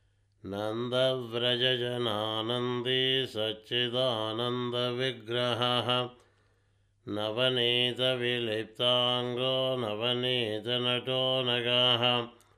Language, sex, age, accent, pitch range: Telugu, male, 60-79, native, 110-125 Hz